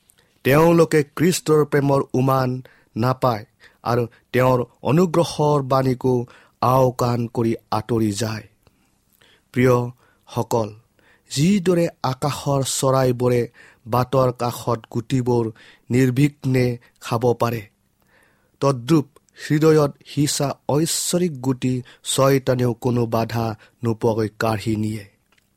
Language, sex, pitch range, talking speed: English, male, 115-140 Hz, 100 wpm